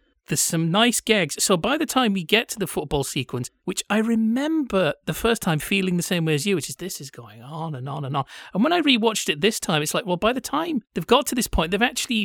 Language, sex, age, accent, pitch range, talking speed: English, male, 30-49, British, 150-215 Hz, 275 wpm